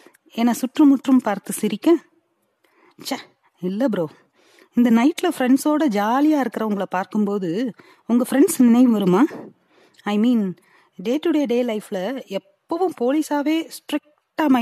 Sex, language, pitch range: female, Tamil, 195-265 Hz